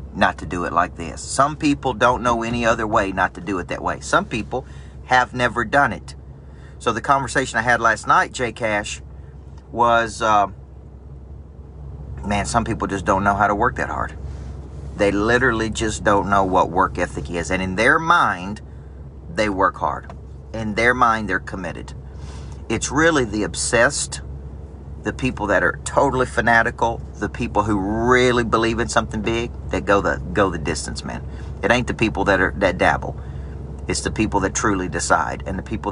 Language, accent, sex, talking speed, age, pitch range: English, American, male, 185 wpm, 40-59, 70-110 Hz